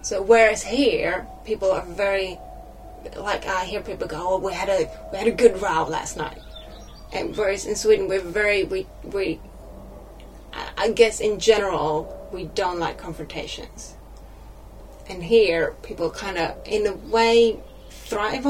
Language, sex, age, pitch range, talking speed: English, female, 30-49, 175-220 Hz, 150 wpm